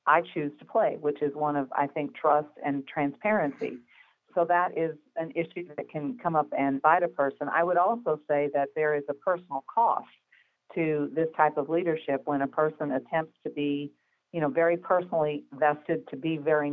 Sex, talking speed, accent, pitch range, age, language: female, 195 wpm, American, 145-165 Hz, 50-69, English